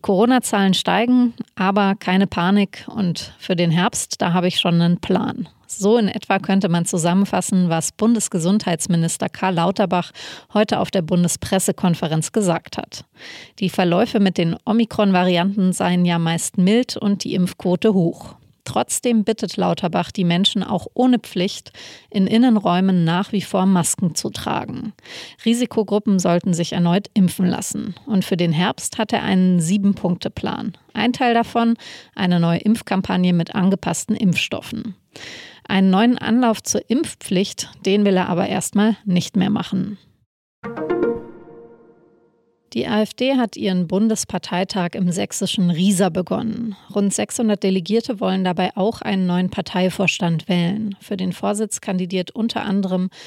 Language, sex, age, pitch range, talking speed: German, female, 30-49, 180-215 Hz, 135 wpm